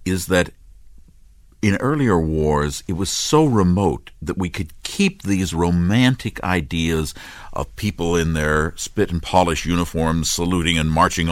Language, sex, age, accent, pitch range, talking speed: Turkish, male, 50-69, American, 80-110 Hz, 135 wpm